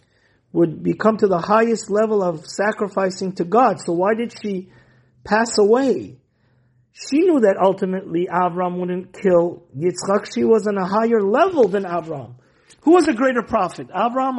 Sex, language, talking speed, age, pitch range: male, English, 160 wpm, 50-69, 140-220 Hz